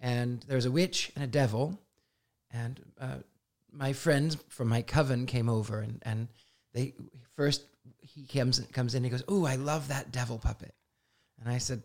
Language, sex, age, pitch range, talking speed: English, male, 40-59, 115-140 Hz, 180 wpm